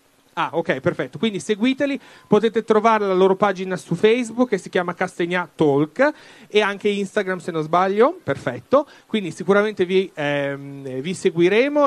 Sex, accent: male, native